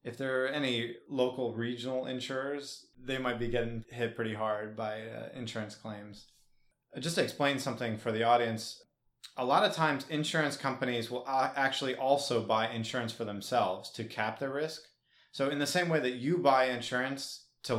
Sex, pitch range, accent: male, 110-130 Hz, American